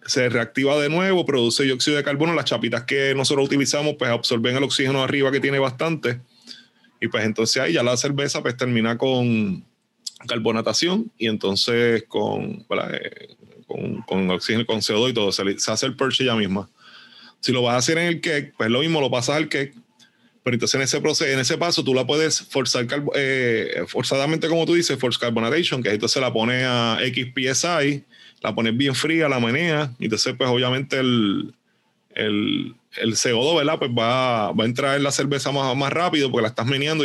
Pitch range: 120-150 Hz